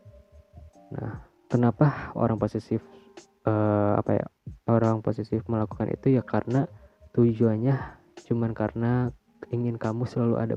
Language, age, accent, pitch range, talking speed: Indonesian, 20-39, native, 100-125 Hz, 115 wpm